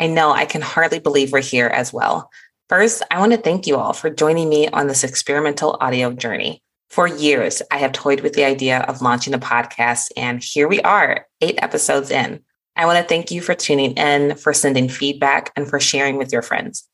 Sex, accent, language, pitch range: female, American, English, 135-160 Hz